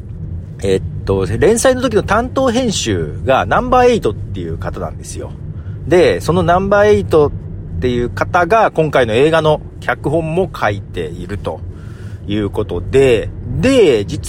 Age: 40-59